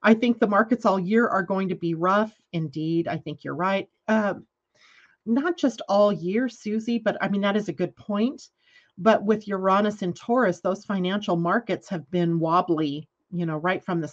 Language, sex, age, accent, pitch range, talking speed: English, female, 40-59, American, 175-210 Hz, 195 wpm